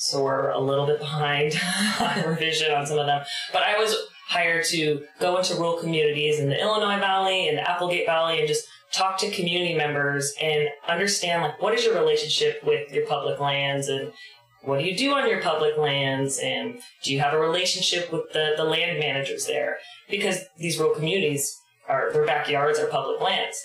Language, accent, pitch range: English, American, 145-190 Hz